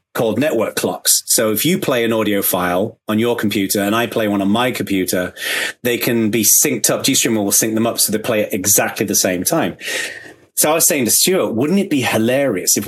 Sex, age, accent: male, 30-49, British